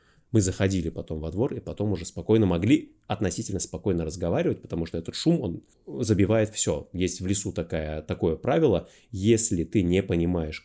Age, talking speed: 20-39, 165 wpm